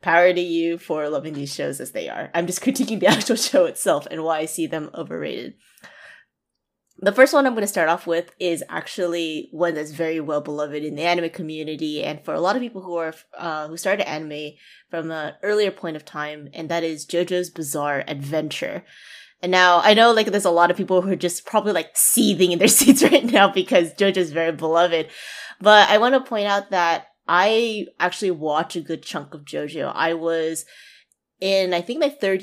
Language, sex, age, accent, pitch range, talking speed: English, female, 20-39, American, 155-195 Hz, 210 wpm